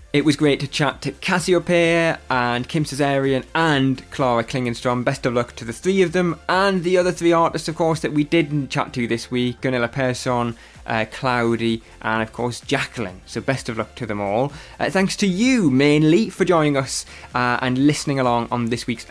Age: 20-39